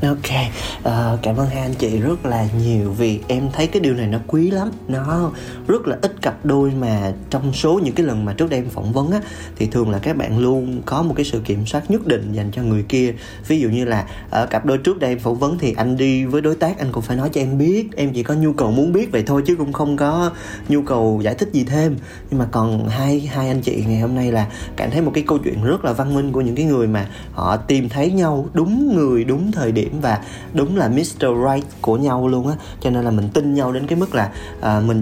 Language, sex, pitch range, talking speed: Vietnamese, male, 110-145 Hz, 265 wpm